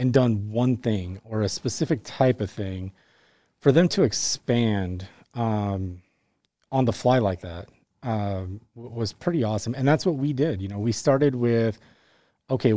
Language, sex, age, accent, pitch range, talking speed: English, male, 30-49, American, 105-125 Hz, 165 wpm